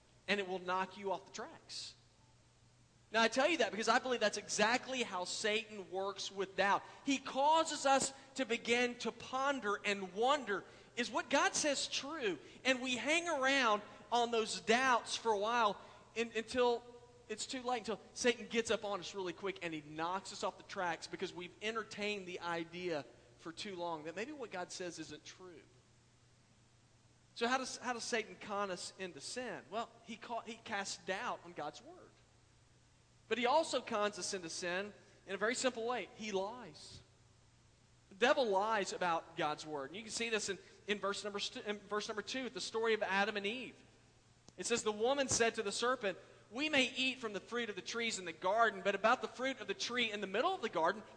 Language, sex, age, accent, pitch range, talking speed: English, male, 40-59, American, 180-240 Hz, 205 wpm